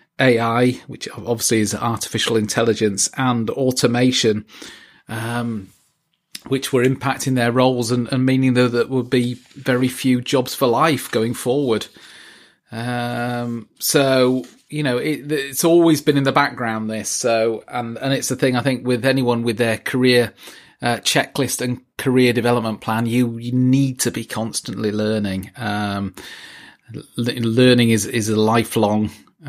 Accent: British